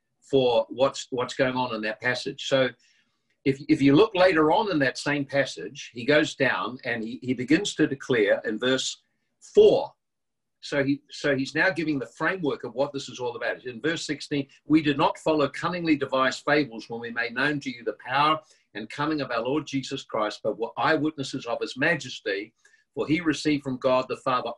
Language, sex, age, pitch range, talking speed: English, male, 50-69, 130-155 Hz, 205 wpm